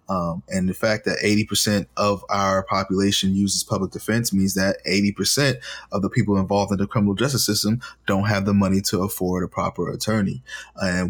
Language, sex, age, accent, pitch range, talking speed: English, male, 20-39, American, 95-110 Hz, 195 wpm